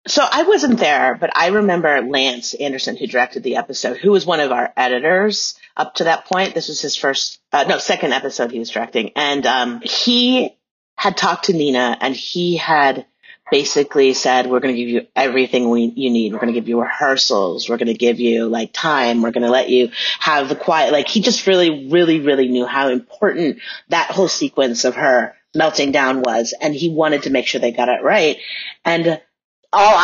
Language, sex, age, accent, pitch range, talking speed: English, female, 30-49, American, 125-170 Hz, 210 wpm